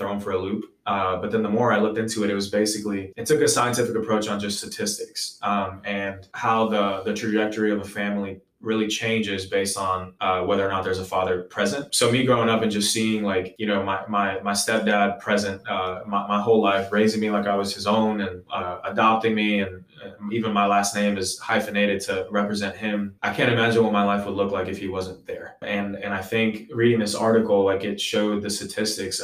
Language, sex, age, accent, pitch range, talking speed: English, male, 20-39, American, 95-105 Hz, 230 wpm